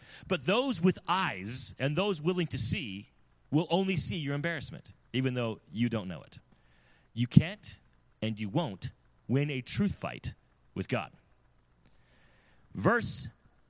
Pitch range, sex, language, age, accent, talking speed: 110-170 Hz, male, English, 30-49, American, 140 wpm